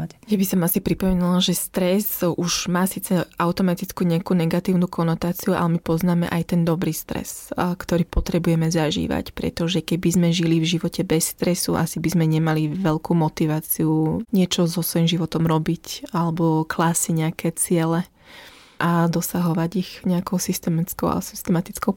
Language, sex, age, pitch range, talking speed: Slovak, female, 20-39, 165-190 Hz, 145 wpm